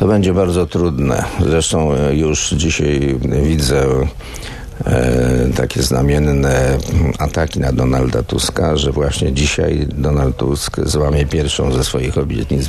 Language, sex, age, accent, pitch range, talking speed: Polish, male, 50-69, native, 70-80 Hz, 115 wpm